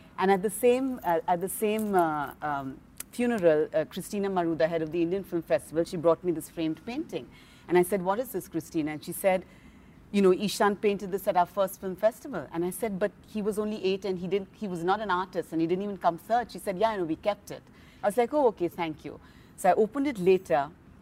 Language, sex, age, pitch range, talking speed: English, female, 40-59, 155-195 Hz, 255 wpm